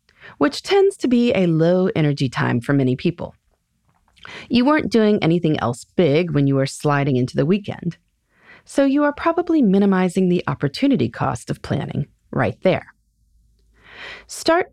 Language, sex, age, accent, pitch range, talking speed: English, female, 30-49, American, 140-225 Hz, 150 wpm